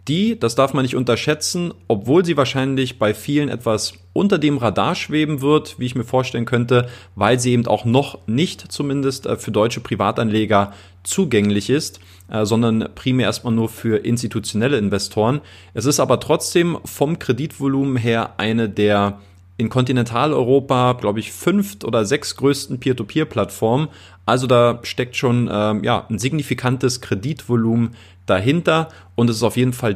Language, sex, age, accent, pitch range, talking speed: German, male, 30-49, German, 105-130 Hz, 150 wpm